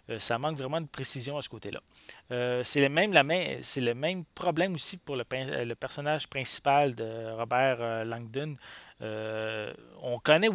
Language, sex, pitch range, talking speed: English, male, 115-150 Hz, 150 wpm